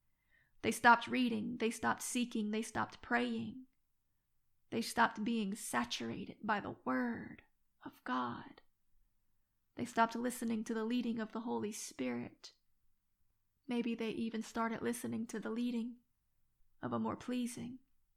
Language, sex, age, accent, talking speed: English, female, 30-49, American, 130 wpm